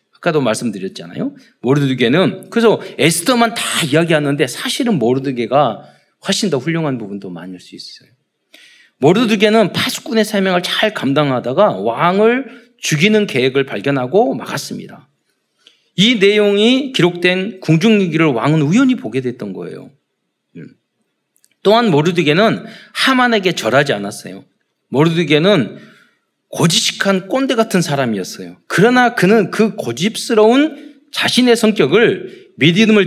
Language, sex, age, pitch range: Korean, male, 40-59, 155-230 Hz